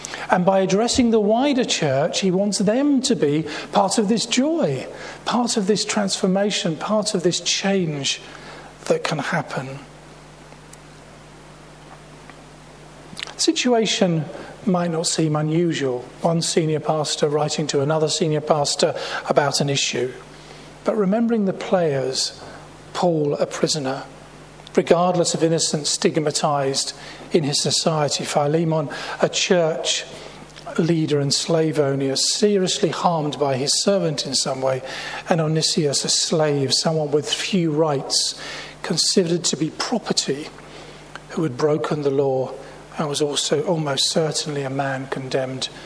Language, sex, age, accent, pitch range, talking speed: English, male, 40-59, British, 145-195 Hz, 125 wpm